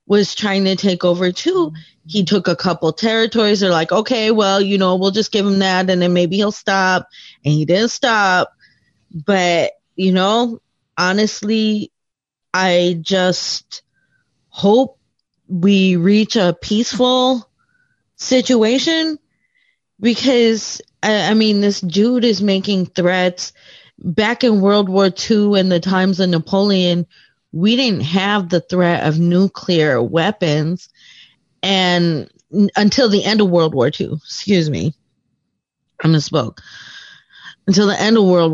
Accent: American